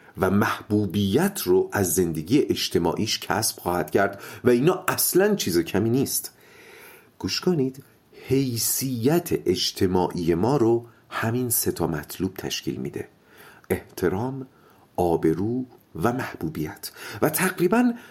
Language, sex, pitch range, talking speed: Persian, male, 105-180 Hz, 105 wpm